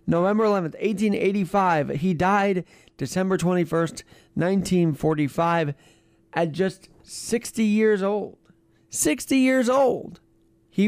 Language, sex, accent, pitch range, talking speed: English, male, American, 145-200 Hz, 95 wpm